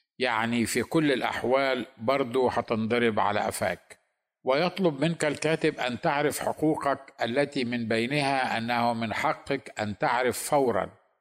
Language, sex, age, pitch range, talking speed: Arabic, male, 50-69, 115-145 Hz, 125 wpm